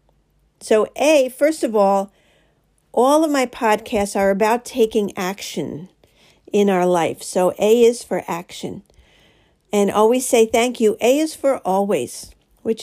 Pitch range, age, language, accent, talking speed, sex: 195-235 Hz, 50-69, English, American, 145 wpm, female